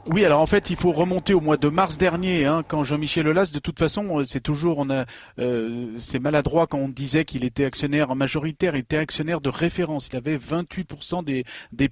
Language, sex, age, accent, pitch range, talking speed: French, male, 40-59, French, 135-170 Hz, 215 wpm